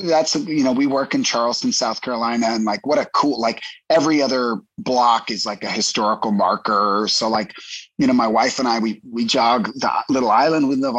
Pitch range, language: 105-145 Hz, English